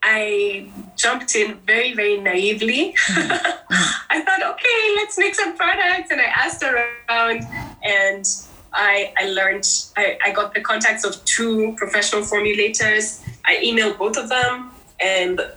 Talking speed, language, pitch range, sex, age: 140 wpm, English, 195-270 Hz, female, 20-39